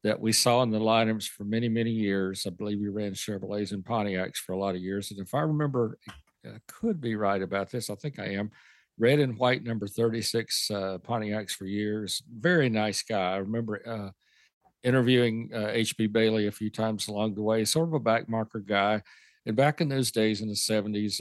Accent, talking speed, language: American, 210 wpm, English